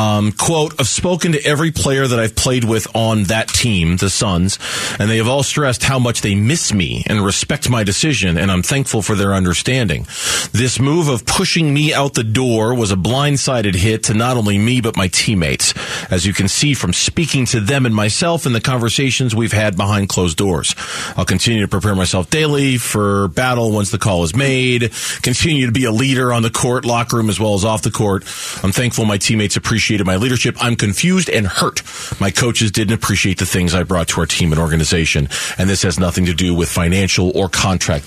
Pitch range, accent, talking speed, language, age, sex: 100-140 Hz, American, 215 wpm, English, 40-59, male